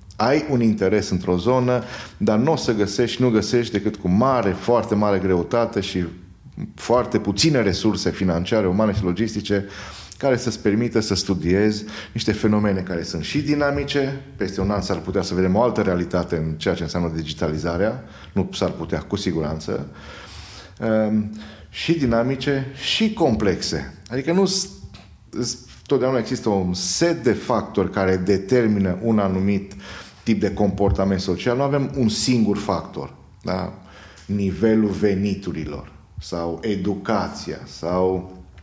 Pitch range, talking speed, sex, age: 95-120 Hz, 135 wpm, male, 30-49